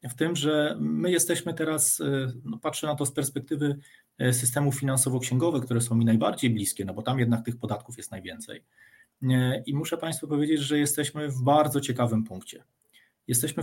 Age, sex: 40-59, male